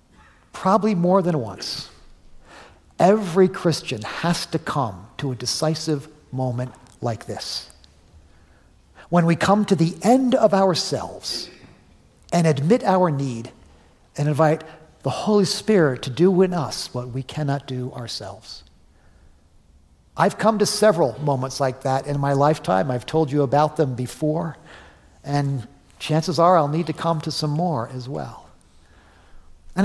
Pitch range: 130-185 Hz